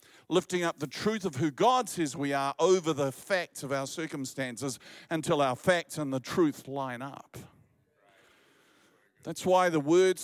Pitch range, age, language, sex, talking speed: 155-210 Hz, 50-69, English, male, 165 wpm